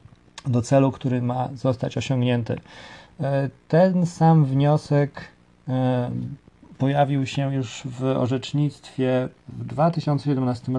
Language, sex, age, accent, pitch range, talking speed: Polish, male, 30-49, native, 125-145 Hz, 90 wpm